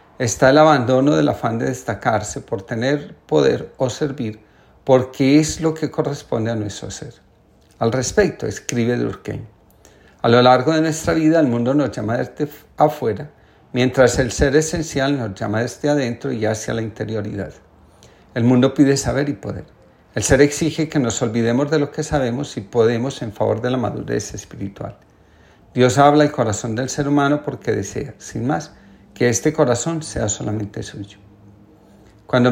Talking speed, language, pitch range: 165 wpm, Spanish, 110-145 Hz